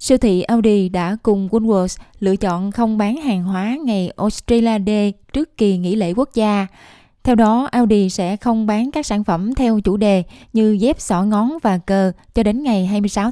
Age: 20-39